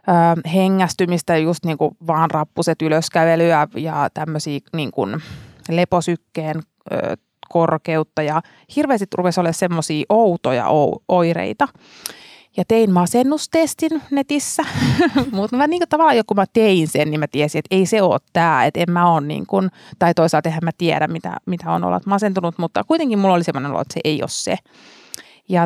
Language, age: Finnish, 30-49